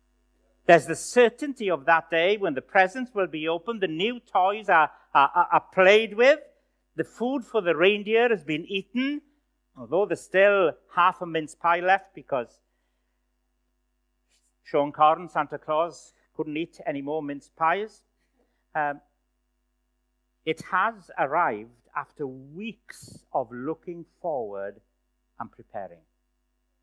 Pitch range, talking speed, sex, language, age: 140-210 Hz, 130 wpm, male, English, 50-69